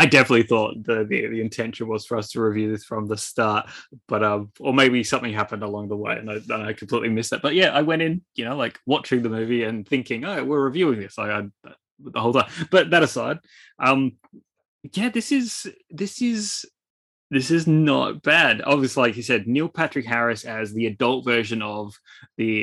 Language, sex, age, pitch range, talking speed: English, male, 10-29, 105-130 Hz, 210 wpm